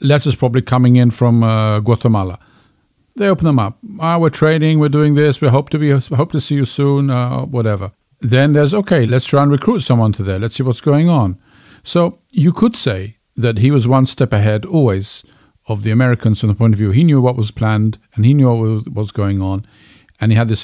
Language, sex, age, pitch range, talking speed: English, male, 50-69, 110-145 Hz, 220 wpm